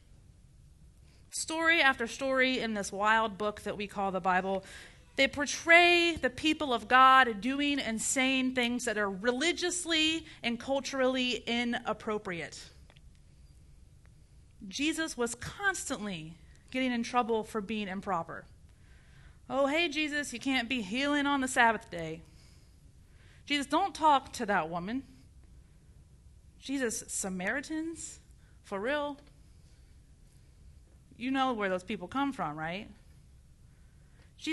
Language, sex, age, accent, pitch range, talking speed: English, female, 30-49, American, 210-290 Hz, 115 wpm